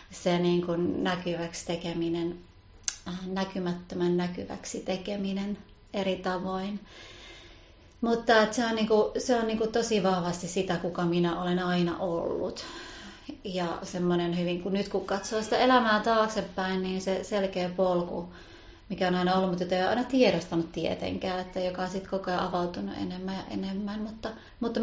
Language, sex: Finnish, female